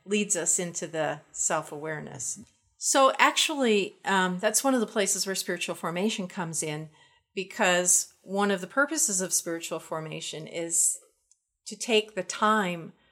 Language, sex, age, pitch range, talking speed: English, female, 50-69, 170-210 Hz, 140 wpm